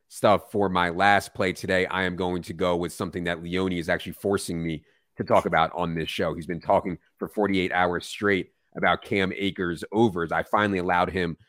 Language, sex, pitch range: English, male, 85-105 Hz